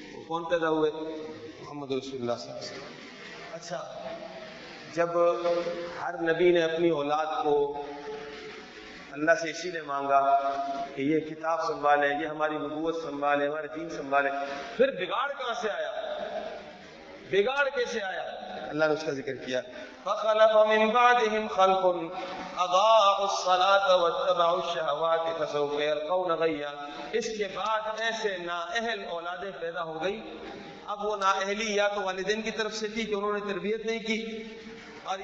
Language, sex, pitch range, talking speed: Urdu, male, 155-215 Hz, 110 wpm